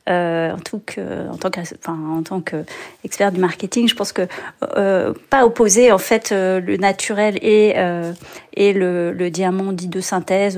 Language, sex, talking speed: French, female, 185 wpm